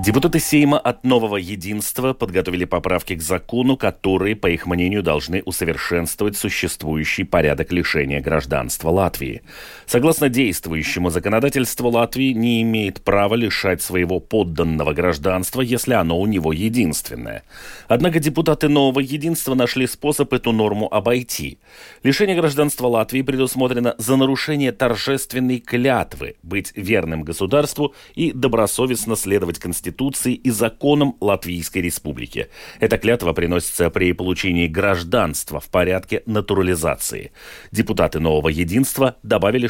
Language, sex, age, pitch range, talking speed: Russian, male, 30-49, 90-130 Hz, 115 wpm